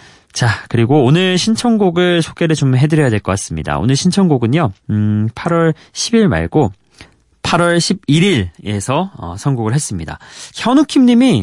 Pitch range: 105-150 Hz